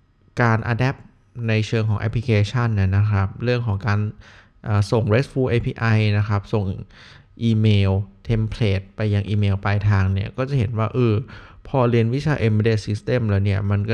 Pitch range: 105-120 Hz